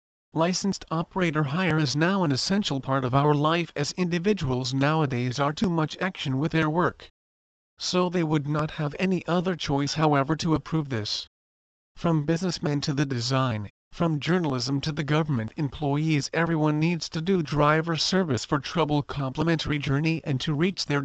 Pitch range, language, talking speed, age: 140-165 Hz, English, 165 wpm, 50-69